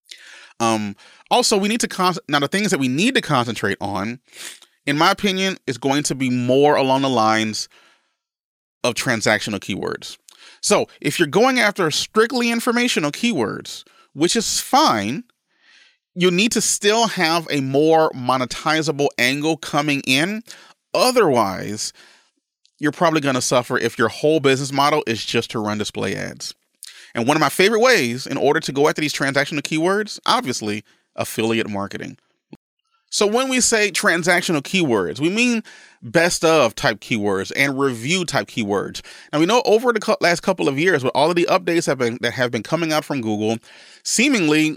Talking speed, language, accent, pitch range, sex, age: 165 wpm, English, American, 125-185 Hz, male, 30-49